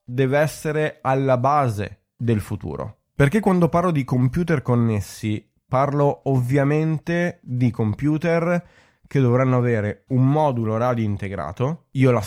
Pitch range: 105-130 Hz